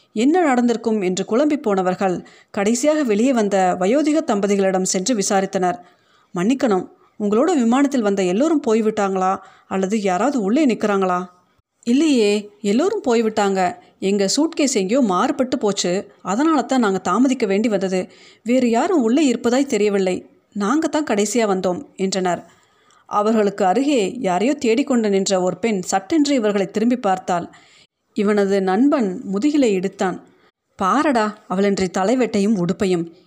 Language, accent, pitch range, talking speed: Tamil, native, 190-250 Hz, 115 wpm